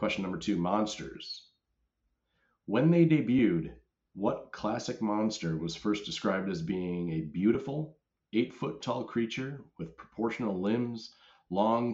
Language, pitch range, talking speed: English, 95-120 Hz, 115 wpm